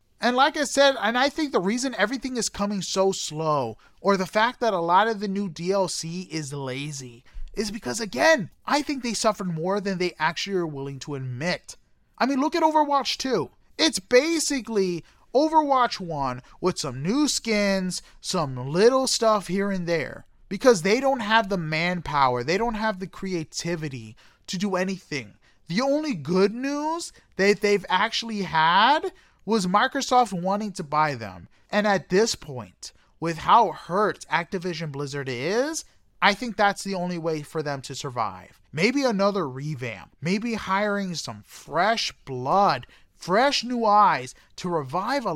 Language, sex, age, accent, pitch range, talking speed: English, male, 30-49, American, 155-225 Hz, 165 wpm